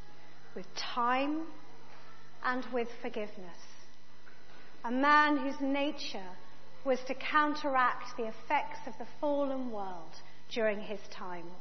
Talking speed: 110 wpm